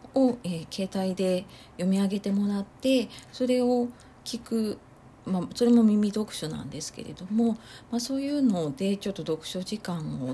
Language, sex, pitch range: Japanese, female, 145-225 Hz